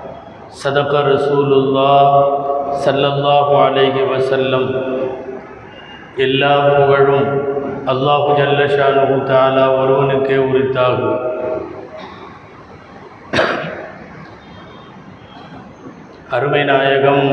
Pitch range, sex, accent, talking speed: 135-140 Hz, male, native, 45 wpm